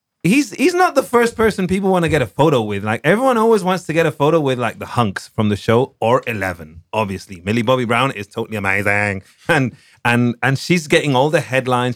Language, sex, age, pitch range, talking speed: English, male, 30-49, 115-150 Hz, 225 wpm